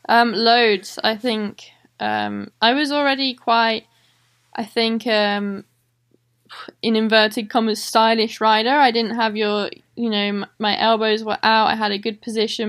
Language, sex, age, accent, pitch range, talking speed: German, female, 10-29, British, 210-235 Hz, 150 wpm